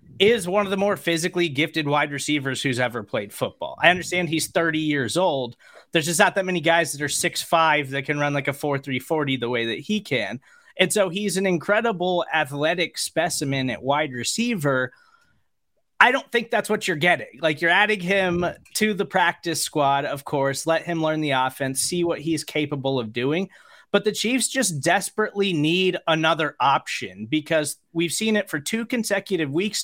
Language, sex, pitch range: English, male, 145-195 Hz